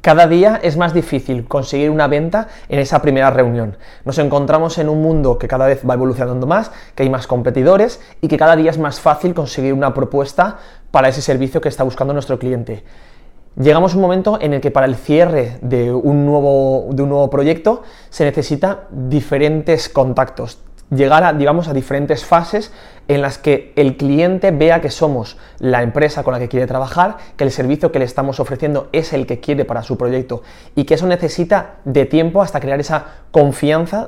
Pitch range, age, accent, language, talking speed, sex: 130-160 Hz, 20-39, Spanish, Spanish, 190 wpm, male